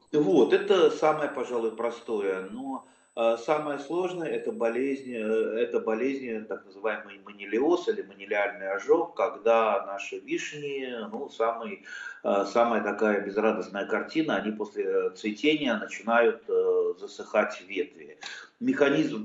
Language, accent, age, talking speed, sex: Russian, native, 30-49, 105 wpm, male